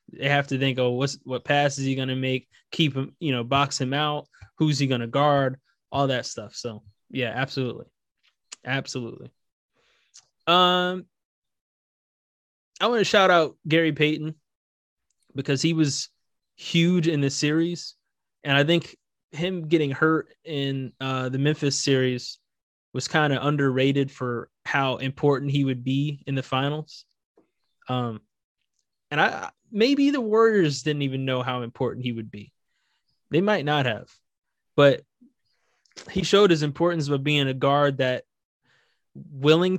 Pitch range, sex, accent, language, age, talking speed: 130-155 Hz, male, American, English, 20-39, 150 wpm